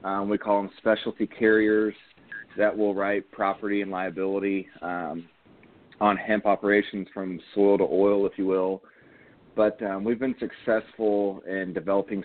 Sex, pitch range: male, 90-105 Hz